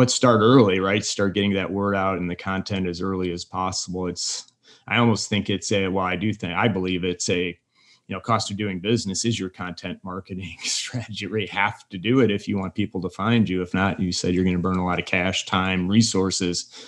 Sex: male